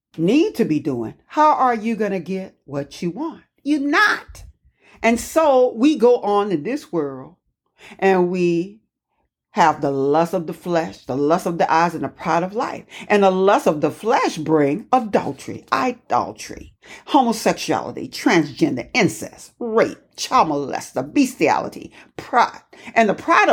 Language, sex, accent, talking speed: English, female, American, 155 wpm